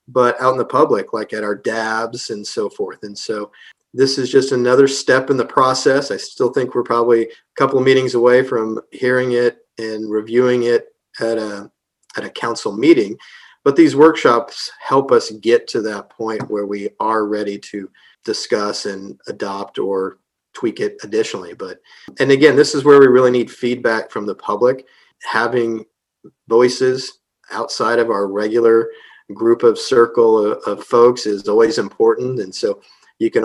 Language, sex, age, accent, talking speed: English, male, 40-59, American, 170 wpm